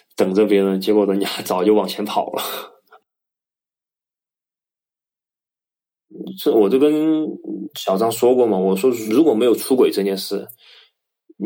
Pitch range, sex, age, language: 100-145 Hz, male, 20-39, Chinese